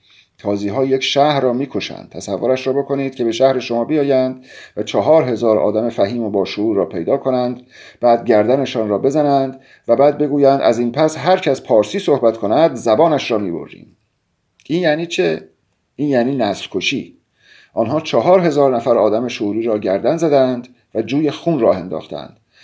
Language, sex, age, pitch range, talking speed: Persian, male, 50-69, 110-140 Hz, 170 wpm